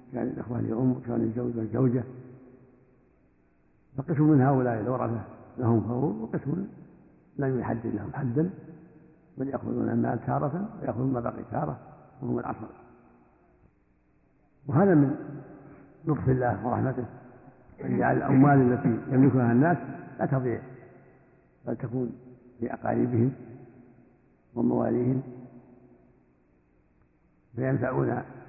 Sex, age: male, 60-79